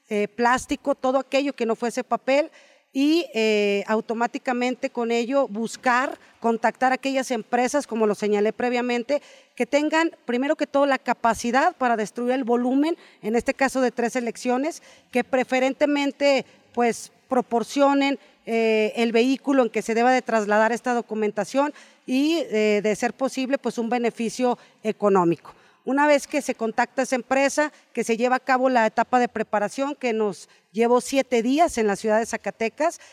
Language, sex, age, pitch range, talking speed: Spanish, female, 40-59, 220-260 Hz, 155 wpm